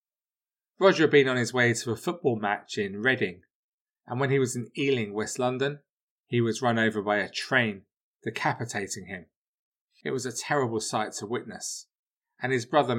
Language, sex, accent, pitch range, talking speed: English, male, British, 110-140 Hz, 180 wpm